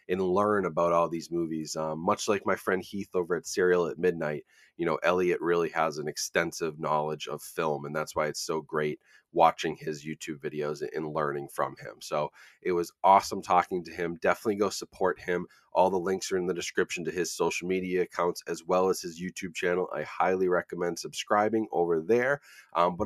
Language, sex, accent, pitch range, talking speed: English, male, American, 85-110 Hz, 205 wpm